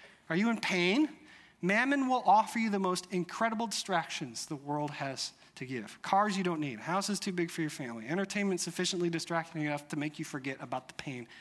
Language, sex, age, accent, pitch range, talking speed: English, male, 40-59, American, 155-210 Hz, 200 wpm